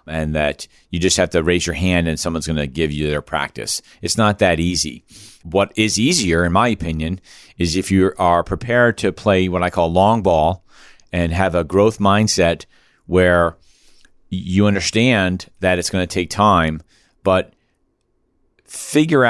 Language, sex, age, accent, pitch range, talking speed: English, male, 40-59, American, 90-105 Hz, 170 wpm